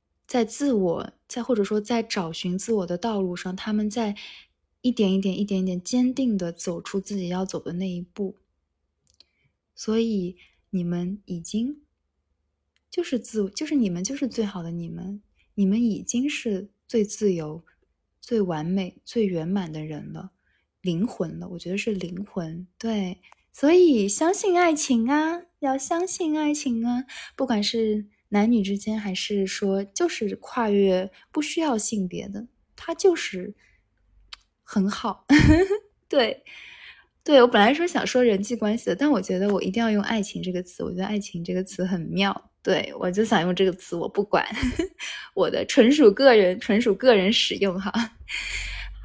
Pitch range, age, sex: 185-250 Hz, 20-39, female